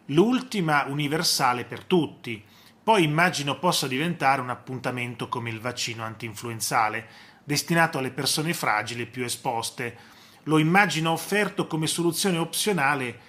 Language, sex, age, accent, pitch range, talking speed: Italian, male, 30-49, native, 125-170 Hz, 115 wpm